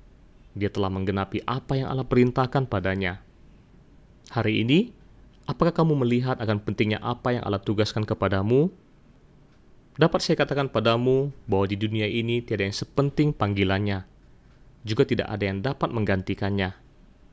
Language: Indonesian